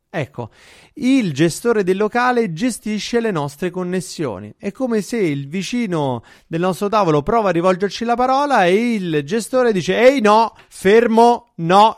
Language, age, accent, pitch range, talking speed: Italian, 30-49, native, 145-205 Hz, 150 wpm